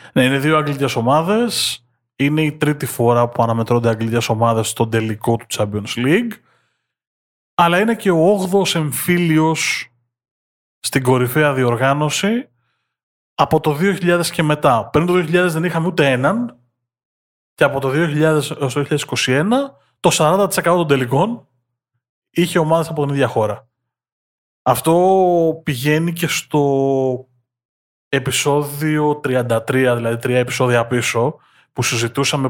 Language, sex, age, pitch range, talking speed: Greek, male, 20-39, 125-165 Hz, 125 wpm